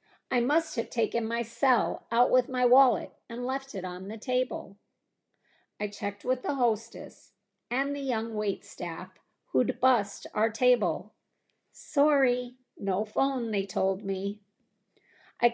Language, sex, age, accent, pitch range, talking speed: English, female, 50-69, American, 200-270 Hz, 140 wpm